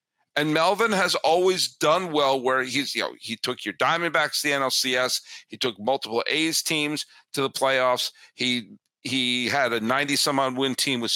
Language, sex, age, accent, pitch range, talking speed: English, male, 50-69, American, 135-210 Hz, 185 wpm